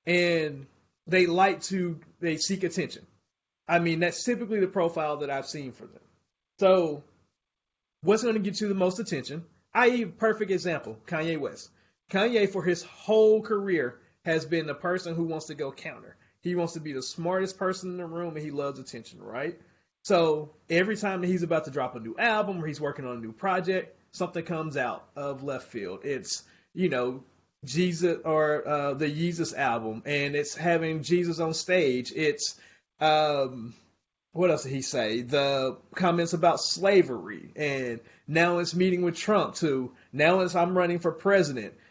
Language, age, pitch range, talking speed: English, 30-49, 150-185 Hz, 175 wpm